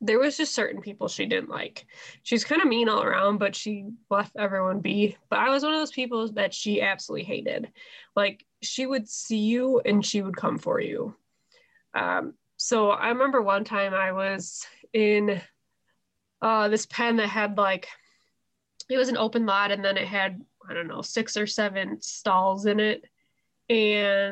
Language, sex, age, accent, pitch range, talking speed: English, female, 20-39, American, 200-235 Hz, 185 wpm